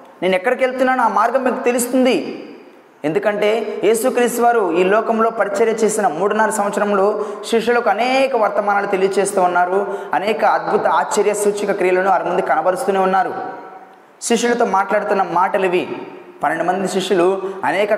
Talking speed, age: 125 wpm, 20-39